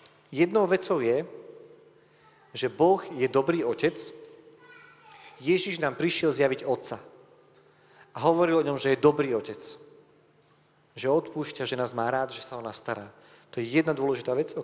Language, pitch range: Slovak, 120-165 Hz